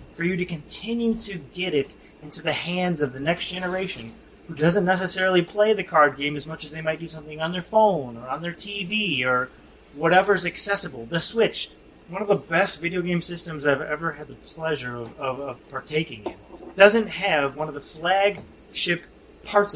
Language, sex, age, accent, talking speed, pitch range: English, male, 30-49, American, 195 wpm, 145-195 Hz